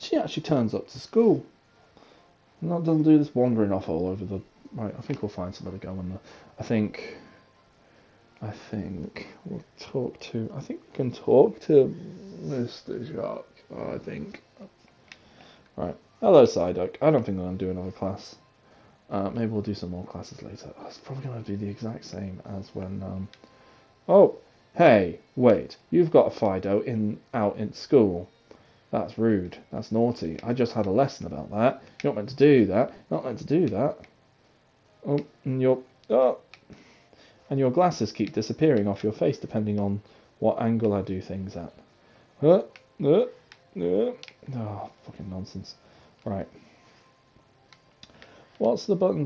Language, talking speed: English, 160 wpm